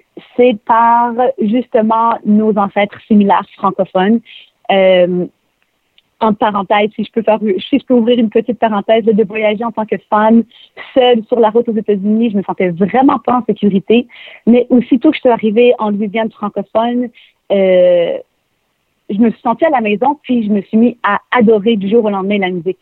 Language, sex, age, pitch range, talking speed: French, female, 40-59, 205-235 Hz, 185 wpm